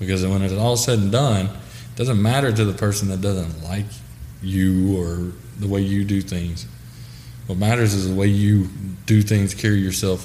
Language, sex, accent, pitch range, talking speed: English, male, American, 95-120 Hz, 195 wpm